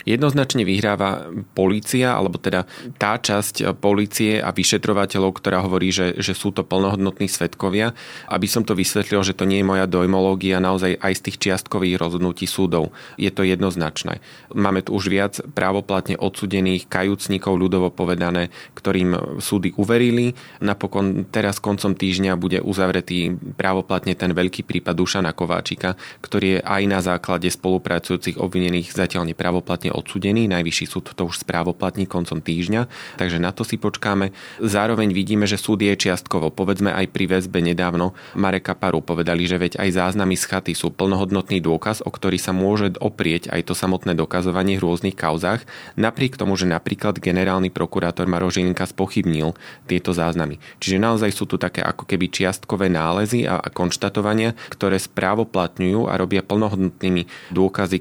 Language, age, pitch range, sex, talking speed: Slovak, 20-39, 90-100 Hz, male, 150 wpm